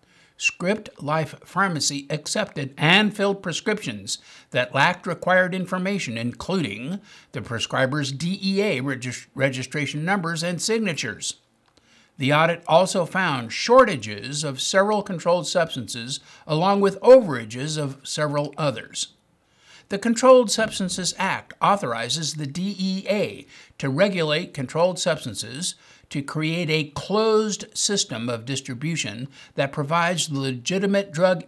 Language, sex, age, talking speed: English, male, 60-79, 110 wpm